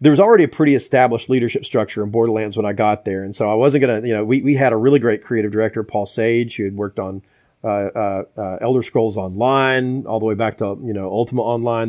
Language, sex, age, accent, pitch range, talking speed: English, male, 40-59, American, 105-130 Hz, 250 wpm